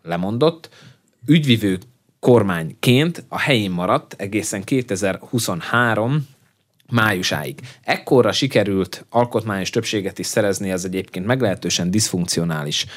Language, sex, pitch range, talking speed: Hungarian, male, 95-115 Hz, 90 wpm